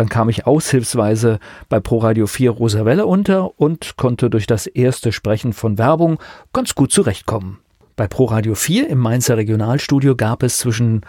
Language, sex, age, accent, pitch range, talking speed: German, male, 40-59, German, 110-135 Hz, 155 wpm